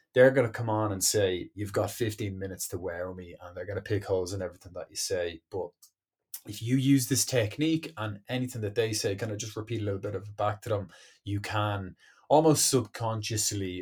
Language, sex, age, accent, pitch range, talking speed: English, male, 20-39, Irish, 100-125 Hz, 225 wpm